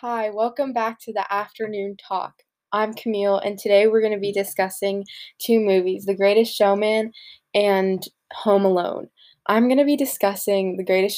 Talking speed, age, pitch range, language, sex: 155 wpm, 10-29, 190-220 Hz, English, female